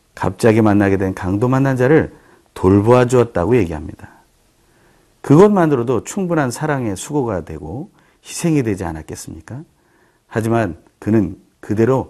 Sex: male